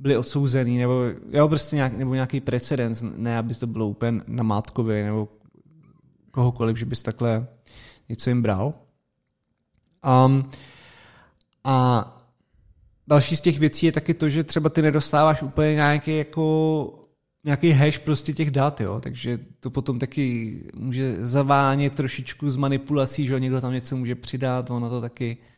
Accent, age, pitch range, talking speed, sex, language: native, 20-39, 120-145 Hz, 150 wpm, male, Czech